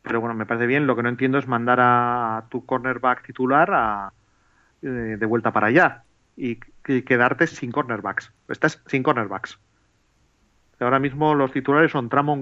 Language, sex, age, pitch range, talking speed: Spanish, male, 30-49, 115-135 Hz, 160 wpm